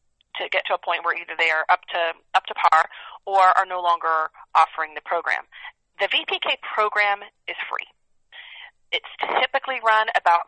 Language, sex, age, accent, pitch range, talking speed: English, female, 30-49, American, 170-220 Hz, 170 wpm